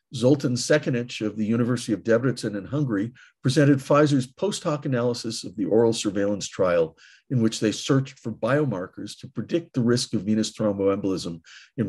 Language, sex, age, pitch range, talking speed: English, male, 50-69, 105-135 Hz, 160 wpm